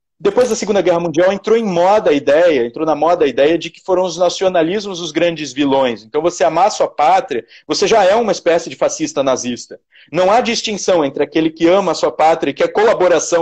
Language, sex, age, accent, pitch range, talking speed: Portuguese, male, 30-49, Brazilian, 165-225 Hz, 225 wpm